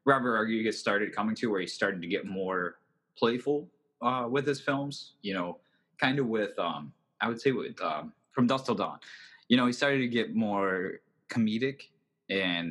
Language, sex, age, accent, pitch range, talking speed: English, male, 20-39, American, 95-120 Hz, 190 wpm